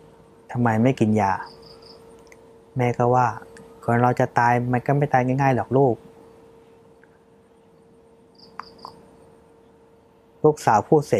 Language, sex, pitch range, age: Thai, male, 110-130 Hz, 20-39